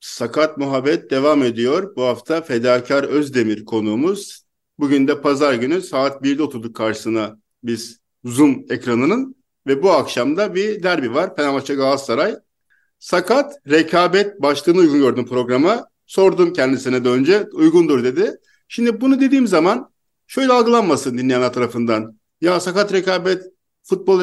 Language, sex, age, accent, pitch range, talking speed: Turkish, male, 50-69, native, 145-220 Hz, 130 wpm